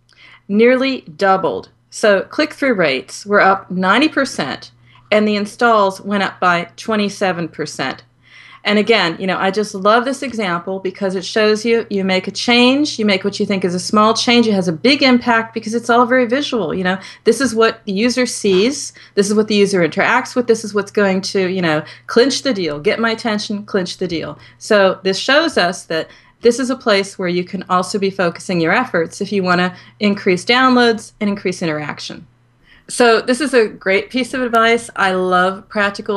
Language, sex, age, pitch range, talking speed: English, female, 40-59, 185-230 Hz, 200 wpm